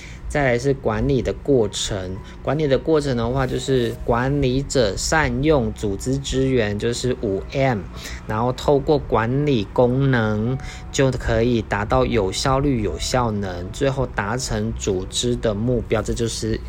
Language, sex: Chinese, male